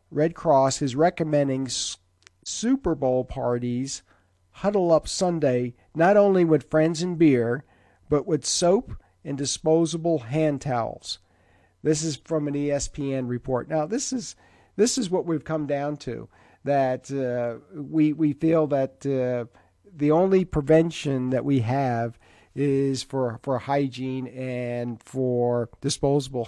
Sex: male